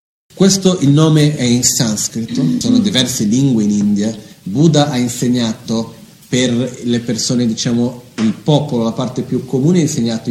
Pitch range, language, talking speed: 115-150 Hz, Italian, 150 wpm